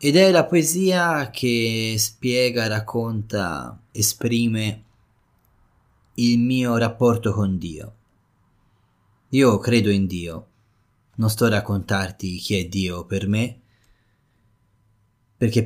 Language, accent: Italian, native